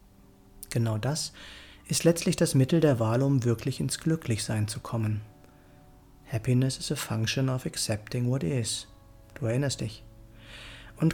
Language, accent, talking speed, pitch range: German, German, 140 wpm, 110-145 Hz